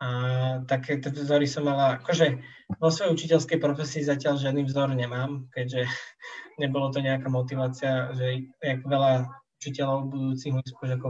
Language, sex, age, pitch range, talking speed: Slovak, male, 20-39, 125-145 Hz, 135 wpm